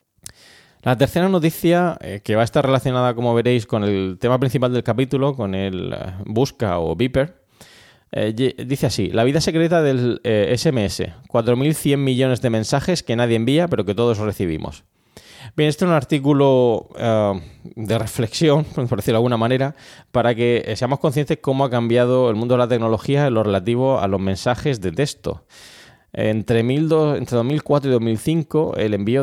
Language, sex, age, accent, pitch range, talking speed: Spanish, male, 20-39, Spanish, 105-130 Hz, 160 wpm